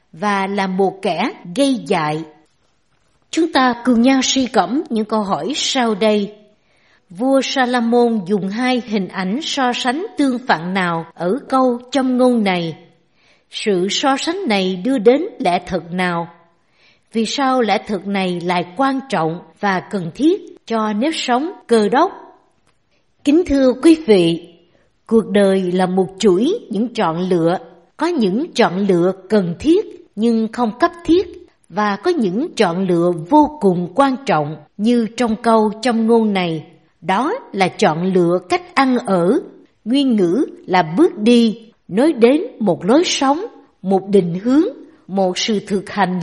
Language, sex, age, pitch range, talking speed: Vietnamese, female, 60-79, 185-265 Hz, 155 wpm